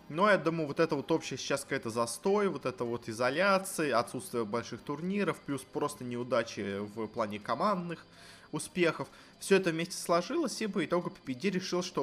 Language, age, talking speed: Russian, 20-39, 170 wpm